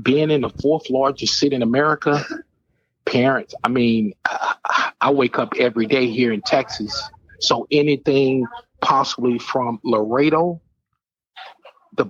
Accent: American